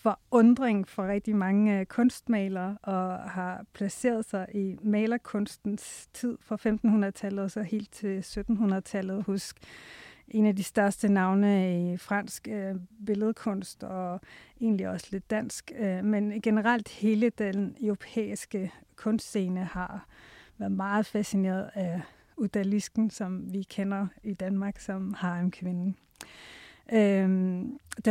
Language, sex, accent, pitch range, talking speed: Danish, female, native, 195-225 Hz, 115 wpm